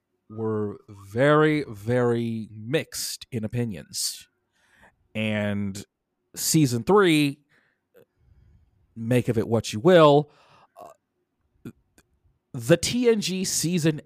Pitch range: 110-165 Hz